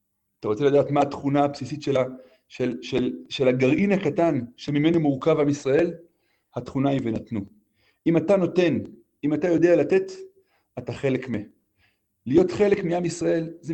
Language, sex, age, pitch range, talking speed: Hebrew, male, 40-59, 135-170 Hz, 150 wpm